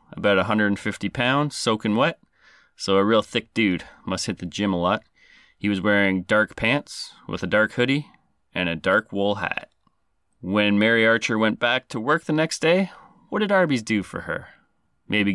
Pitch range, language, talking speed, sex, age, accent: 100-125 Hz, English, 190 wpm, male, 30-49, American